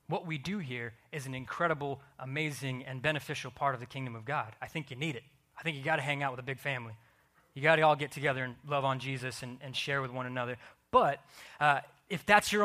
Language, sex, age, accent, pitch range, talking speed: English, male, 20-39, American, 130-165 Hz, 250 wpm